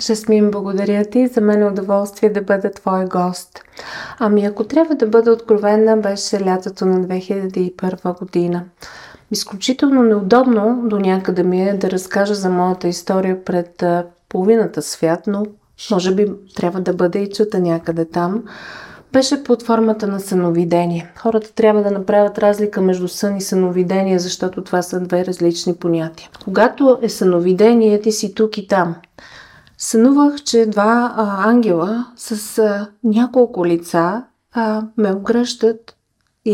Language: Bulgarian